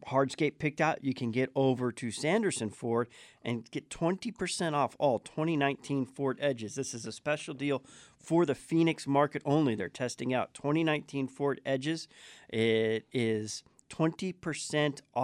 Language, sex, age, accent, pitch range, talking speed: English, male, 40-59, American, 120-150 Hz, 145 wpm